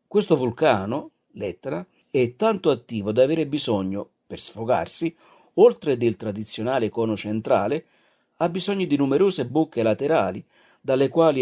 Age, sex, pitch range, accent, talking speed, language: 50-69, male, 110-150 Hz, native, 125 wpm, Italian